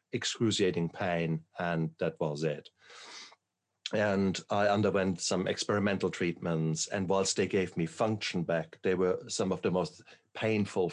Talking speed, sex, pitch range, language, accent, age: 145 wpm, male, 90-110 Hz, English, German, 50-69